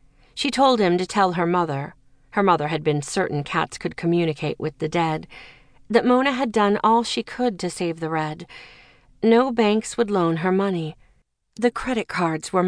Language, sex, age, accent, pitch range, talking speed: English, female, 40-59, American, 165-220 Hz, 185 wpm